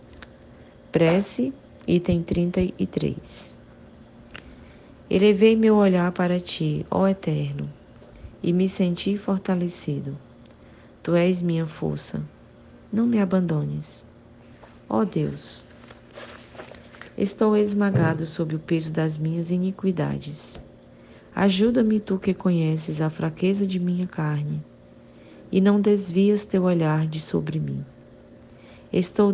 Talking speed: 100 wpm